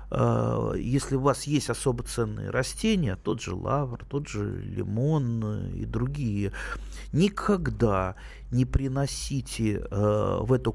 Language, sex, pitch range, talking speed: Russian, male, 105-130 Hz, 110 wpm